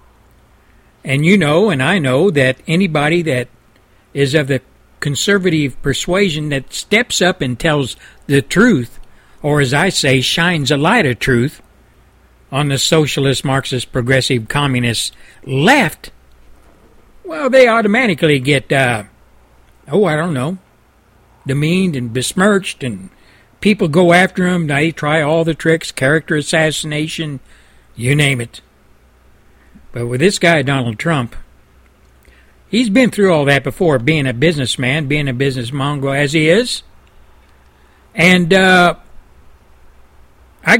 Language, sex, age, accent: Japanese, male, 60-79, American